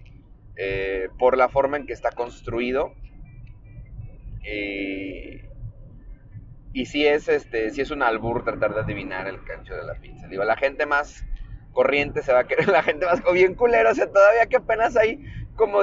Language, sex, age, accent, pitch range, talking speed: Spanish, male, 30-49, Mexican, 125-195 Hz, 175 wpm